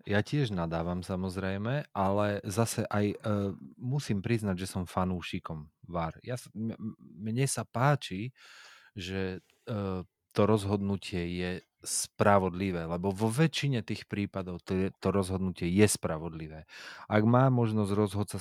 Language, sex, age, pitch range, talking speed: Slovak, male, 30-49, 90-110 Hz, 125 wpm